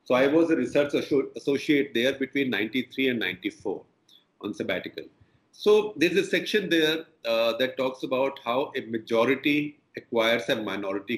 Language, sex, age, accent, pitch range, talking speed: Marathi, male, 40-59, native, 120-170 Hz, 155 wpm